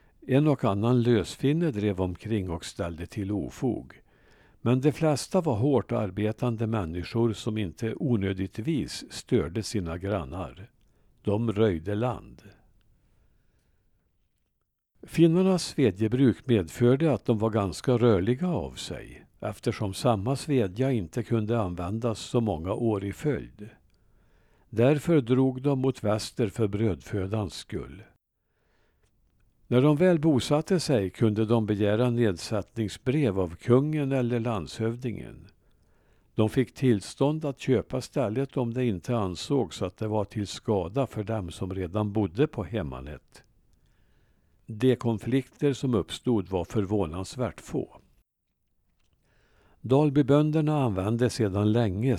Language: Swedish